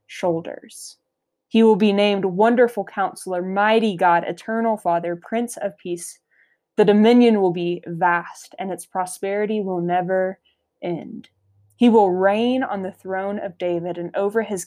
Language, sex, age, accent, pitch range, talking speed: English, female, 20-39, American, 180-225 Hz, 145 wpm